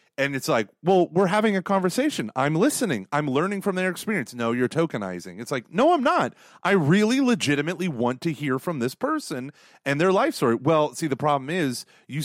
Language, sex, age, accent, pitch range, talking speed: English, male, 30-49, American, 125-180 Hz, 205 wpm